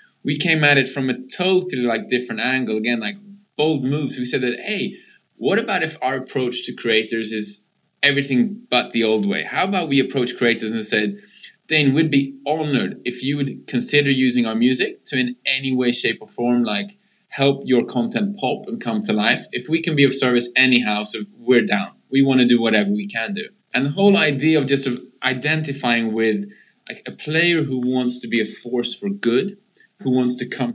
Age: 20-39